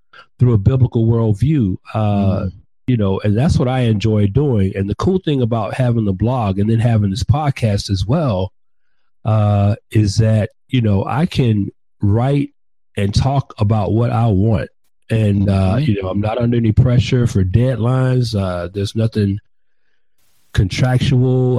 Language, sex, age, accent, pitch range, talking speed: English, male, 40-59, American, 100-120 Hz, 160 wpm